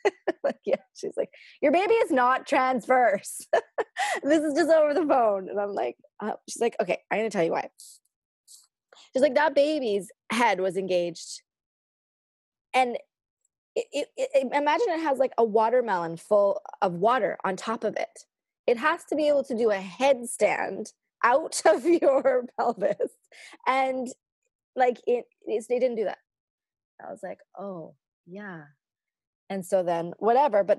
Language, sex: English, female